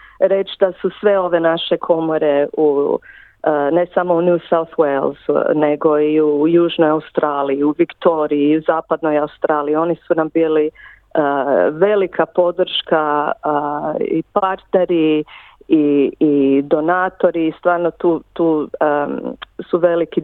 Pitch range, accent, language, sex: 150-175 Hz, native, Croatian, female